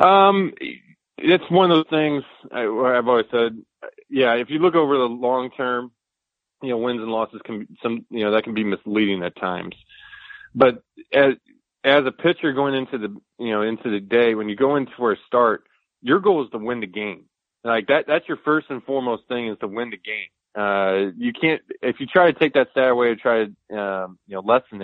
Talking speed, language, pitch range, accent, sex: 220 wpm, English, 105-135 Hz, American, male